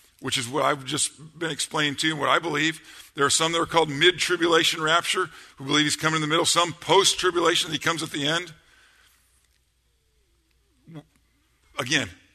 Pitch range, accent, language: 110-160 Hz, American, English